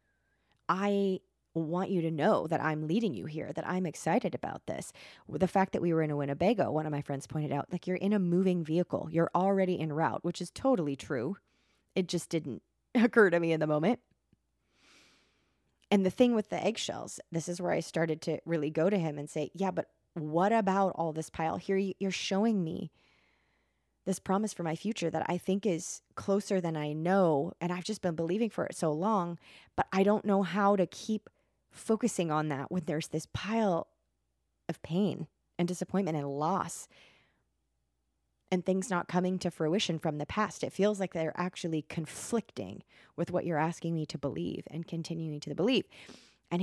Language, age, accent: English, 20-39, American